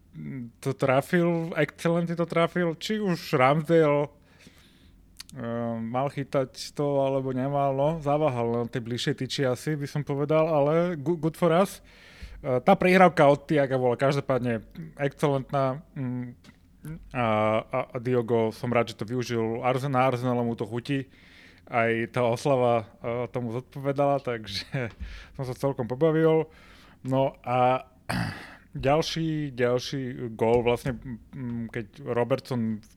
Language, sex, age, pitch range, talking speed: Slovak, male, 20-39, 115-145 Hz, 120 wpm